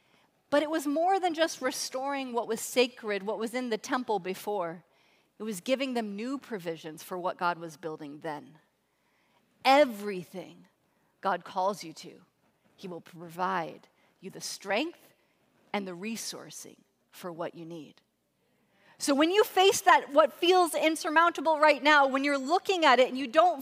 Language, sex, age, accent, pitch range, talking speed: English, female, 30-49, American, 190-285 Hz, 165 wpm